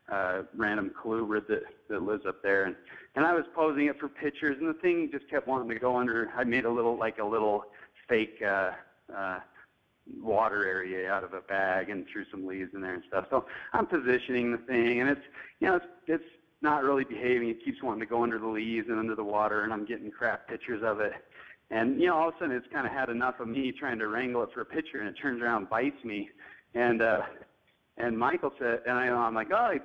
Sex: male